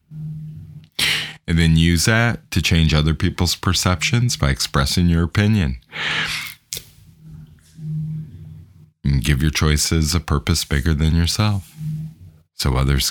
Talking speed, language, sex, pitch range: 110 wpm, English, male, 70-90 Hz